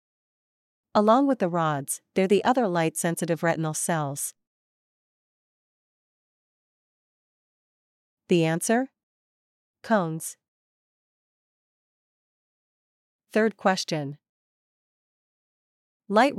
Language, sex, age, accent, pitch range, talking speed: English, female, 40-59, American, 160-205 Hz, 60 wpm